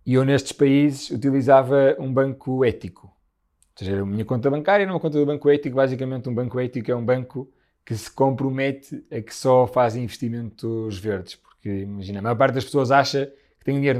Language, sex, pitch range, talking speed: Portuguese, male, 120-145 Hz, 205 wpm